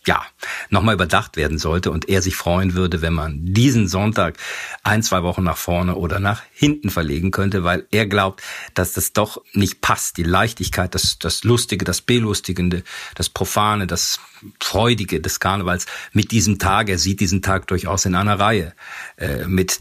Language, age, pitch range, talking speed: German, 50-69, 85-100 Hz, 175 wpm